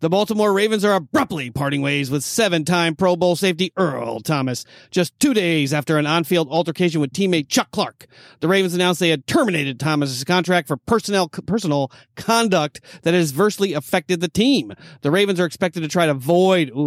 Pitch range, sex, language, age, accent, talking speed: 150-190 Hz, male, English, 40-59, American, 180 wpm